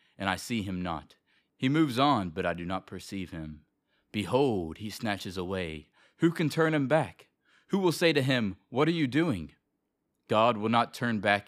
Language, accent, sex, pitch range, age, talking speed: English, American, male, 95-145 Hz, 30-49, 195 wpm